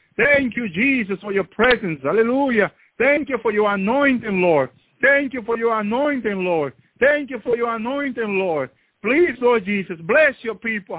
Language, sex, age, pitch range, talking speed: English, male, 60-79, 195-265 Hz, 170 wpm